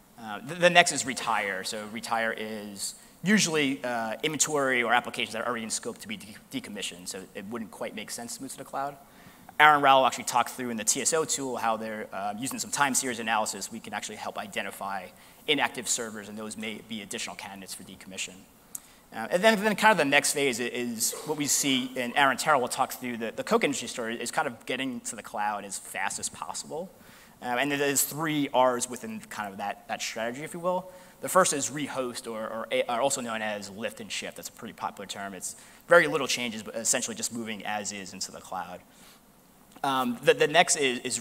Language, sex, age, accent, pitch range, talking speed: English, male, 30-49, American, 115-160 Hz, 220 wpm